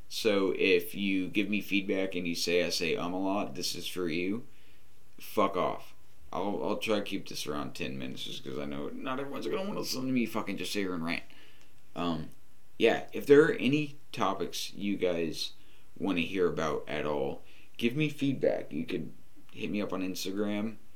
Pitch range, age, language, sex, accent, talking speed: 80-110 Hz, 30-49, English, male, American, 205 wpm